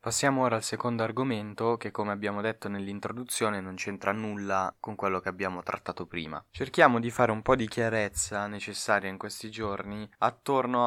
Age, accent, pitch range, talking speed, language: 20-39, native, 105-125 Hz, 170 wpm, Italian